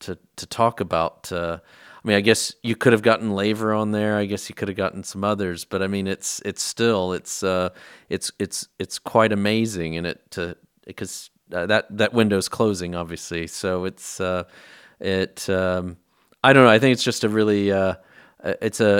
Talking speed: 200 wpm